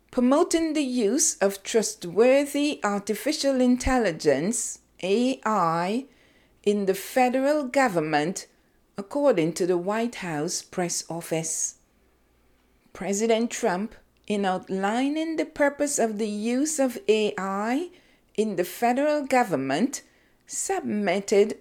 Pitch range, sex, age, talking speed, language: 195-265 Hz, female, 50-69, 95 wpm, English